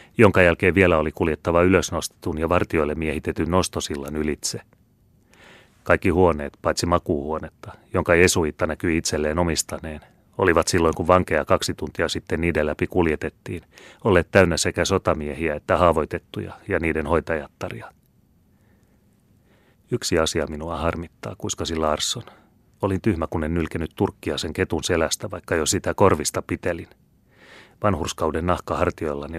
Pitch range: 80-95 Hz